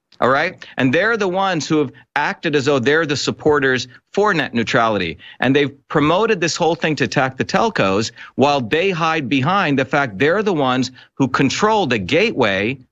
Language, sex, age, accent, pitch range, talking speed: English, male, 40-59, American, 125-160 Hz, 185 wpm